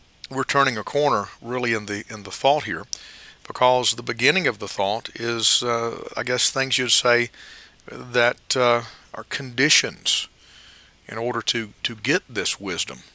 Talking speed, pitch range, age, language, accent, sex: 160 wpm, 110-135 Hz, 50-69, English, American, male